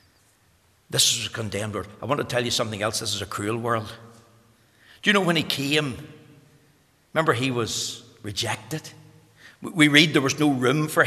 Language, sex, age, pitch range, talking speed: English, male, 60-79, 130-190 Hz, 185 wpm